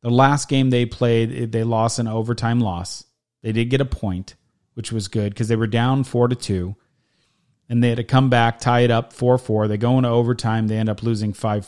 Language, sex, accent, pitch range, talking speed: English, male, American, 110-130 Hz, 230 wpm